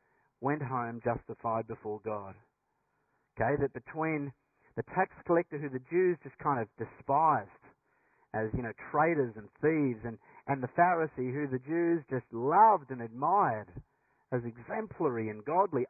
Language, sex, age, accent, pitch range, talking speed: English, male, 50-69, Australian, 125-200 Hz, 145 wpm